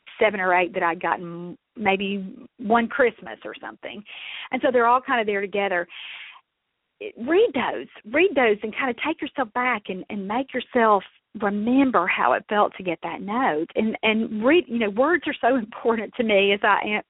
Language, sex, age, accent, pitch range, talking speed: English, female, 40-59, American, 200-250 Hz, 195 wpm